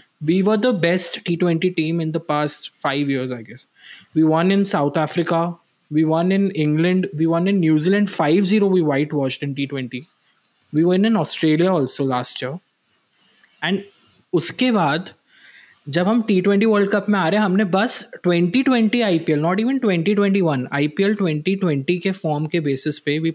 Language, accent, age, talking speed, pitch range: Hindi, native, 20-39, 165 wpm, 155-200 Hz